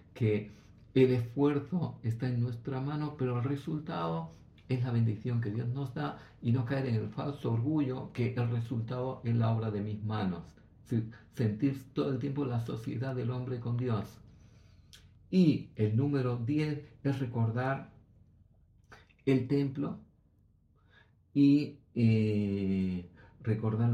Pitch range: 105-135 Hz